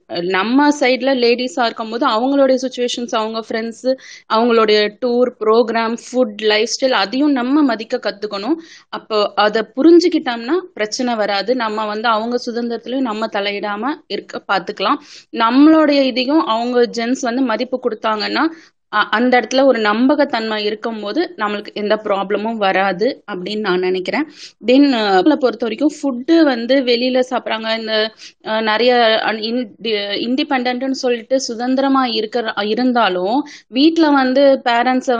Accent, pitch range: native, 215-265 Hz